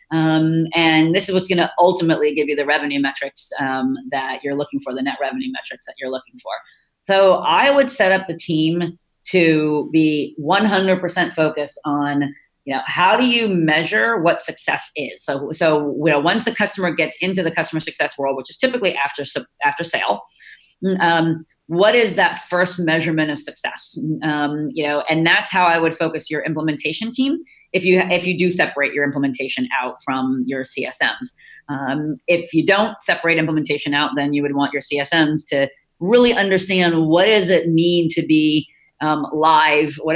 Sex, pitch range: female, 145-180 Hz